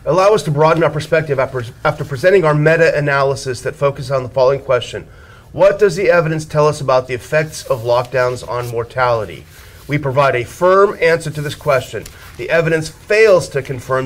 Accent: American